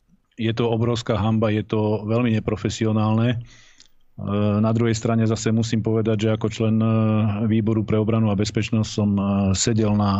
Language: Slovak